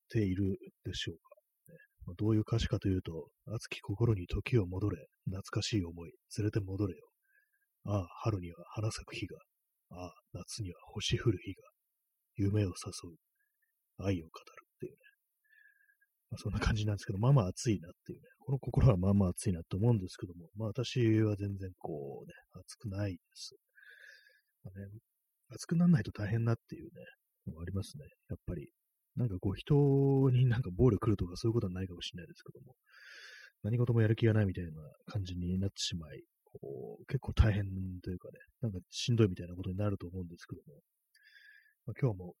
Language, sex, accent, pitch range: Japanese, male, native, 95-130 Hz